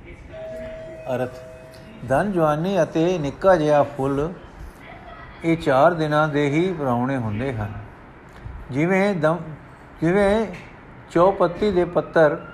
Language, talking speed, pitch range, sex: Punjabi, 95 wpm, 140-170 Hz, male